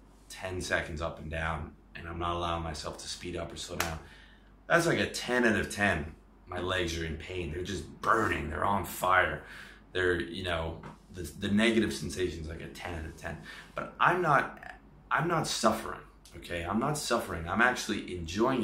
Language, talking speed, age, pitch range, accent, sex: English, 195 wpm, 30-49, 85-105 Hz, American, male